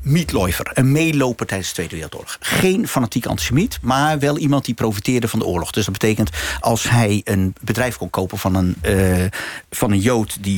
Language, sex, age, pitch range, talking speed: Dutch, male, 50-69, 110-155 Hz, 175 wpm